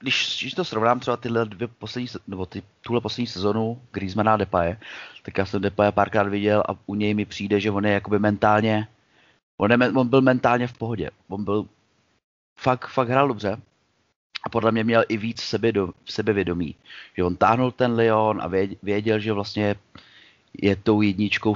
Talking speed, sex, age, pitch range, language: 180 wpm, male, 30-49, 95-115 Hz, Czech